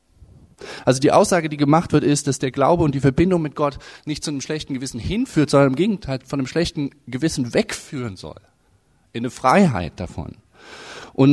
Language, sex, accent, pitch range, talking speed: German, male, German, 115-145 Hz, 185 wpm